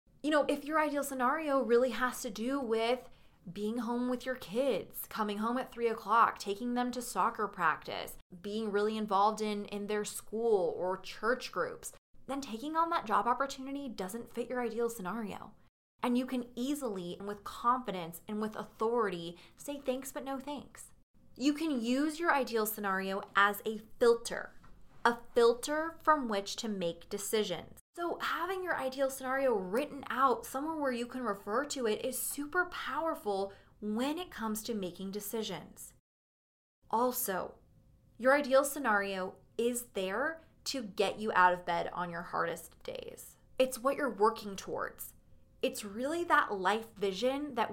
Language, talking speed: English, 160 wpm